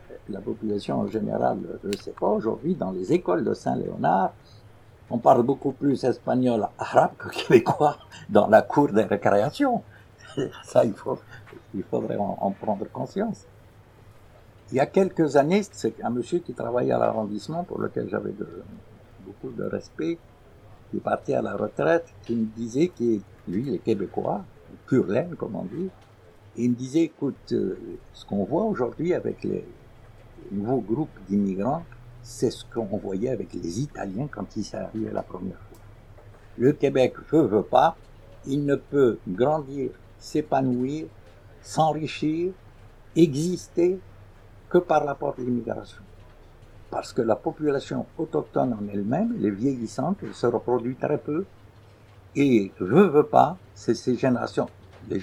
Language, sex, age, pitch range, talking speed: French, male, 60-79, 105-140 Hz, 150 wpm